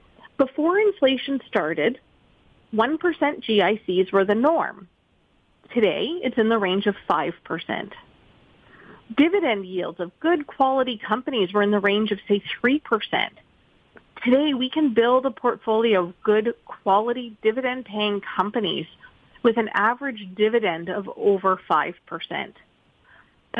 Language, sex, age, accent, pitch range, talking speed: English, female, 30-49, American, 195-255 Hz, 115 wpm